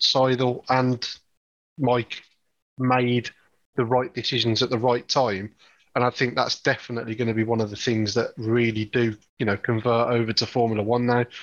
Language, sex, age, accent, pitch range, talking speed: English, male, 30-49, British, 115-130 Hz, 180 wpm